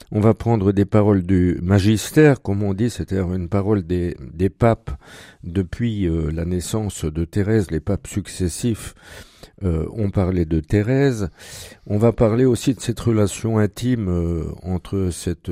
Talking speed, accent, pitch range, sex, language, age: 160 wpm, French, 90-115 Hz, male, French, 50-69